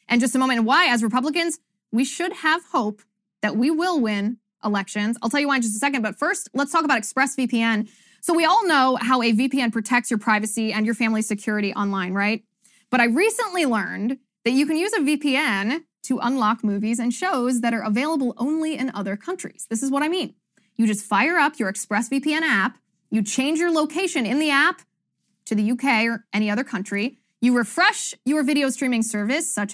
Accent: American